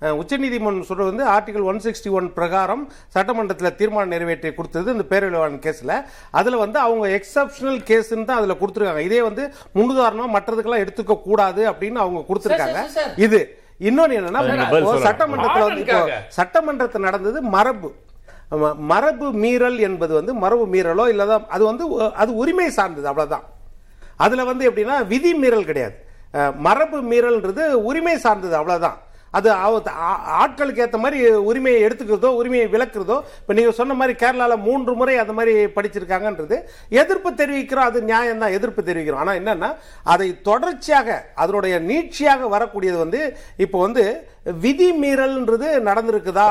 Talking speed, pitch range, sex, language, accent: 65 wpm, 190-255 Hz, male, Tamil, native